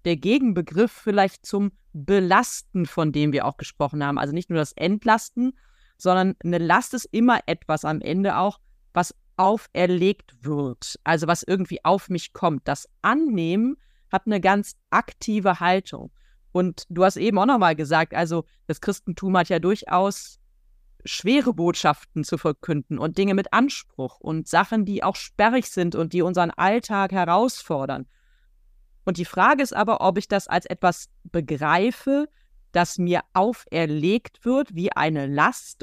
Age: 30-49